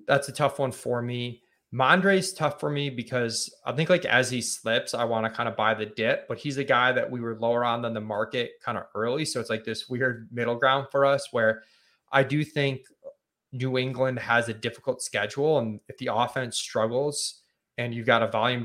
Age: 20-39